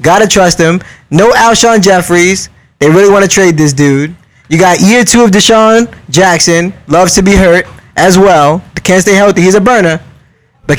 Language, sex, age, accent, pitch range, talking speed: English, male, 20-39, American, 165-205 Hz, 190 wpm